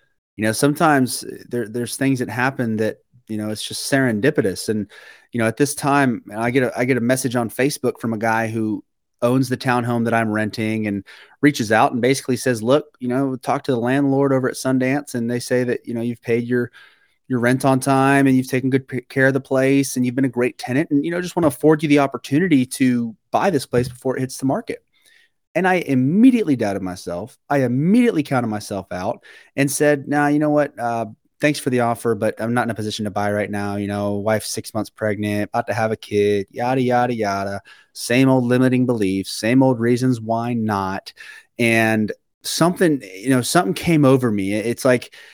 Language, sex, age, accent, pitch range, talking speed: English, male, 30-49, American, 110-135 Hz, 220 wpm